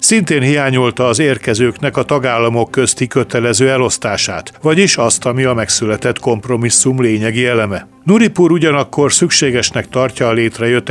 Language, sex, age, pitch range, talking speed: Hungarian, male, 60-79, 115-140 Hz, 125 wpm